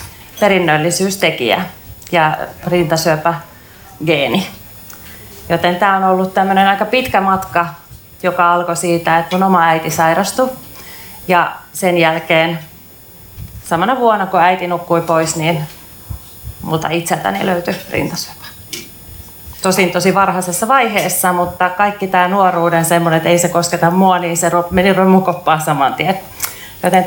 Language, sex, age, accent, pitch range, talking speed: Finnish, female, 30-49, native, 170-210 Hz, 115 wpm